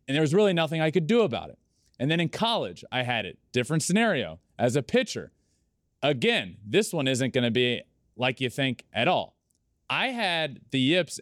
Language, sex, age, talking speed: English, male, 20-39, 205 wpm